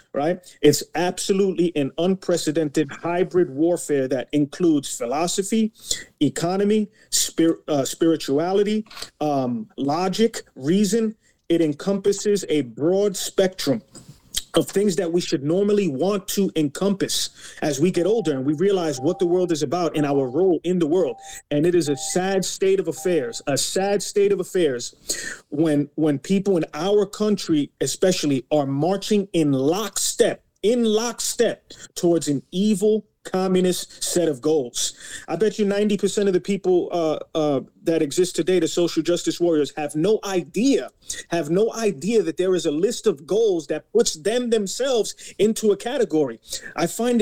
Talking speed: 155 wpm